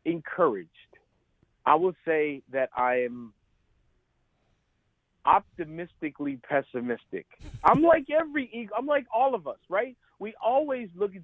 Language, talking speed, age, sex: English, 125 wpm, 40-59, male